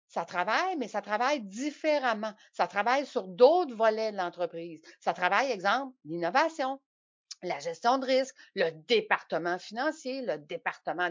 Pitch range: 185-265 Hz